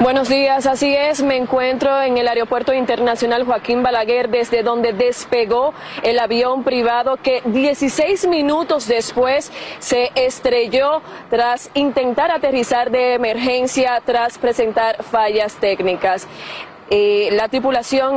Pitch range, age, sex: 240-280 Hz, 30-49, female